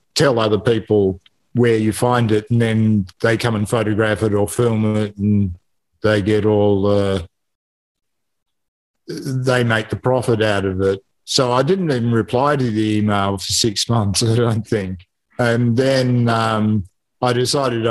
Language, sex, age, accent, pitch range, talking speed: English, male, 50-69, Australian, 105-115 Hz, 160 wpm